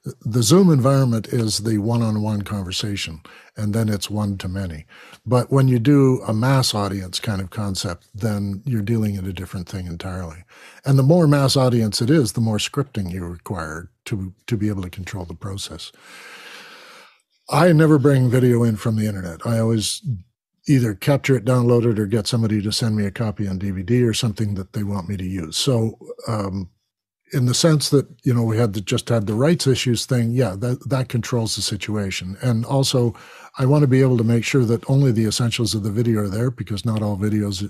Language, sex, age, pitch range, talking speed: English, male, 60-79, 105-130 Hz, 205 wpm